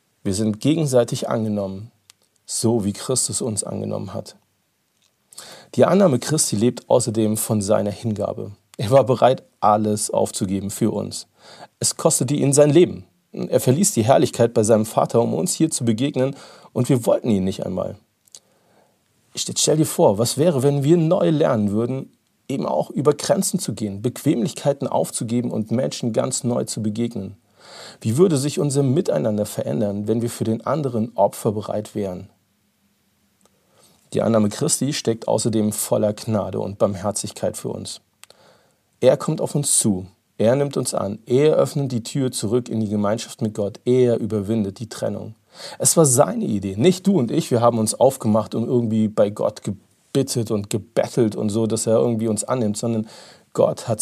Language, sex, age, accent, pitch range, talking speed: German, male, 40-59, German, 105-130 Hz, 165 wpm